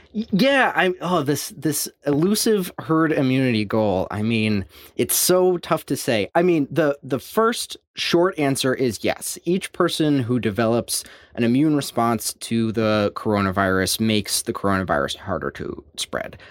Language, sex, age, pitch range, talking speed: English, male, 20-39, 105-135 Hz, 150 wpm